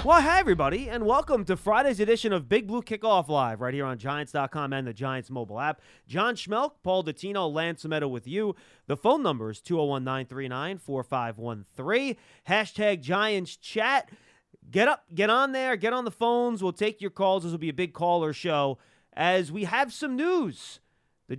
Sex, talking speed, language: male, 180 wpm, English